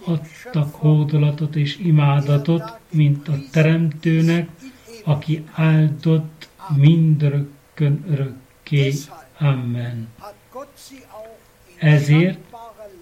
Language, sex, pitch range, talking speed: Hungarian, male, 140-170 Hz, 60 wpm